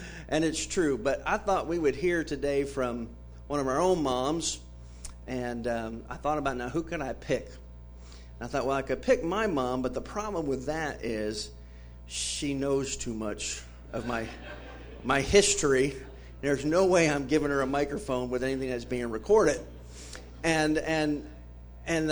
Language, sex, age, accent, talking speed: English, male, 50-69, American, 175 wpm